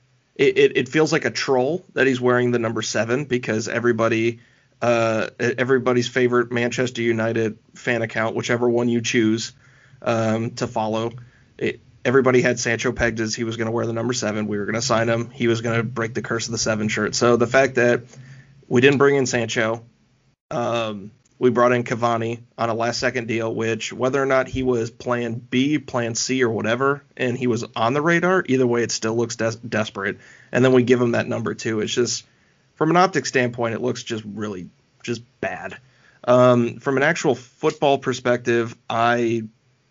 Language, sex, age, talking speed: English, male, 30-49, 195 wpm